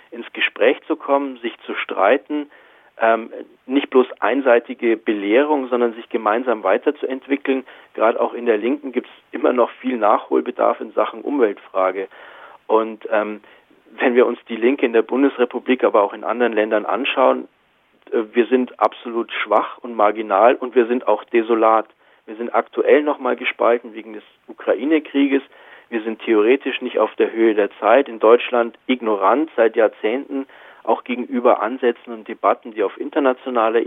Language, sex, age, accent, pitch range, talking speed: German, male, 40-59, German, 115-130 Hz, 155 wpm